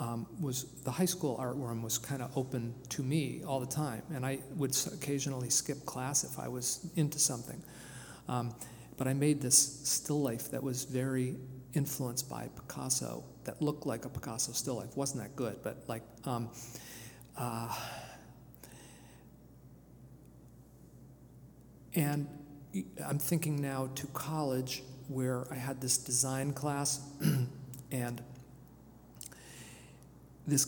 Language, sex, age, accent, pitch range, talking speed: English, male, 50-69, American, 125-145 Hz, 135 wpm